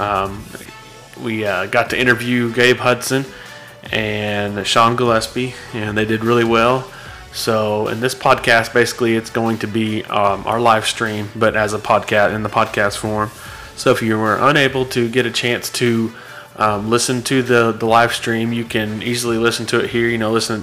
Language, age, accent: English, 30-49, American